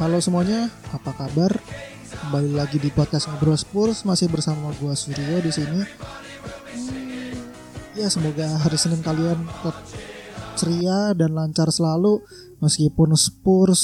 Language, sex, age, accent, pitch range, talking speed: Indonesian, male, 20-39, native, 145-175 Hz, 120 wpm